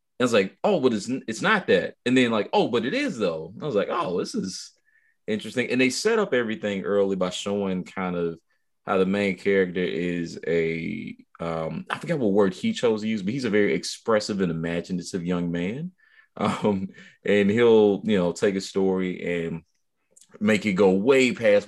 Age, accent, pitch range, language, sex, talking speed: 20-39, American, 85-100 Hz, English, male, 200 wpm